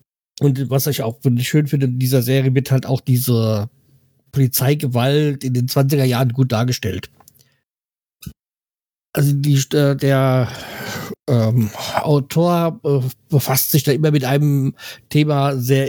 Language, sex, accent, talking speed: German, male, German, 125 wpm